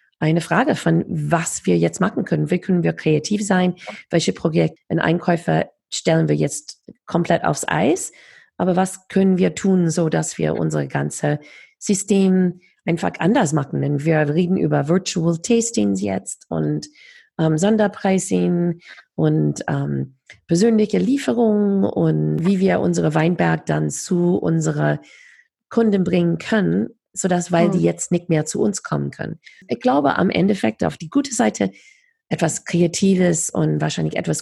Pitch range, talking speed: 145-190 Hz, 145 wpm